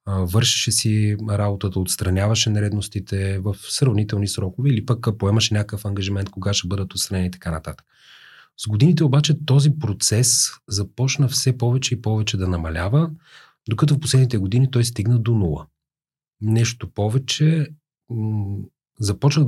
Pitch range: 95-125 Hz